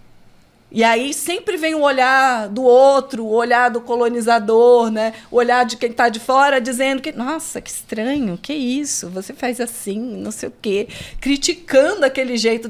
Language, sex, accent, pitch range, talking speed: Portuguese, female, Brazilian, 205-260 Hz, 175 wpm